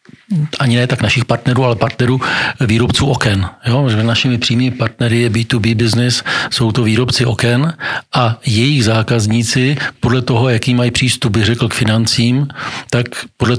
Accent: native